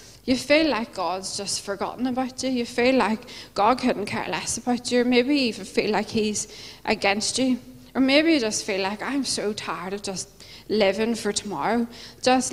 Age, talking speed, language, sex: 20-39, 195 wpm, English, female